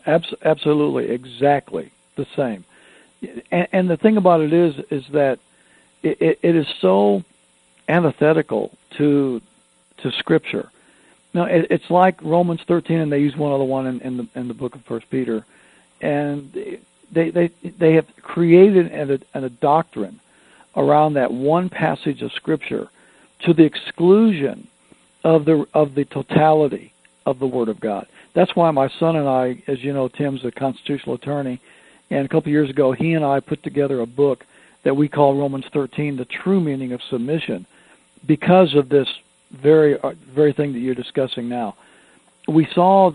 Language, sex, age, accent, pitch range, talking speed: English, male, 60-79, American, 130-160 Hz, 165 wpm